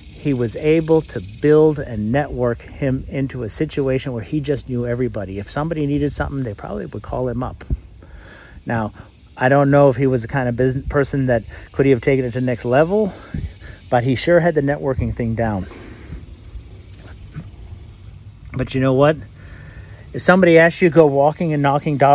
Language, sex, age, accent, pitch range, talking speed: English, male, 40-59, American, 110-155 Hz, 185 wpm